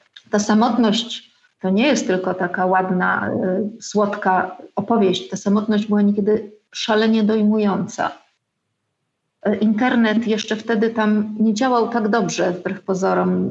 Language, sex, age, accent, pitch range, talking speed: Polish, female, 40-59, native, 195-225 Hz, 115 wpm